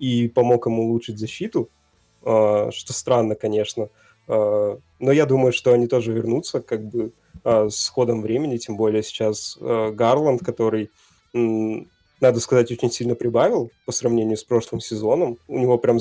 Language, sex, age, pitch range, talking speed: Russian, male, 20-39, 110-125 Hz, 140 wpm